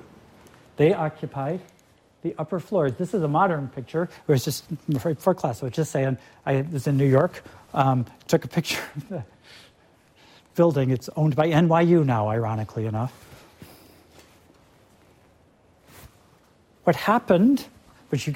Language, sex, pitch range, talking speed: English, male, 125-185 Hz, 150 wpm